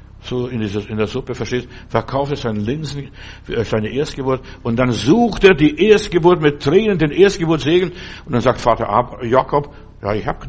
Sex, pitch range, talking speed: male, 120-160 Hz, 170 wpm